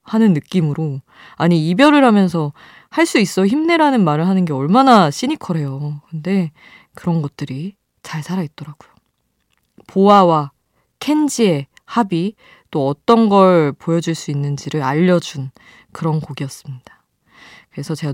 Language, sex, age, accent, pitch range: Korean, female, 20-39, native, 155-230 Hz